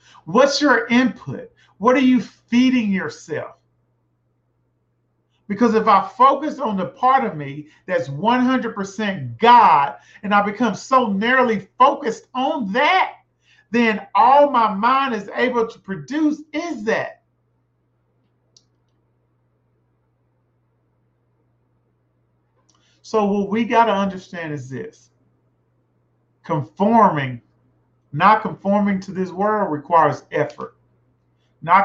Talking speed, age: 105 wpm, 40-59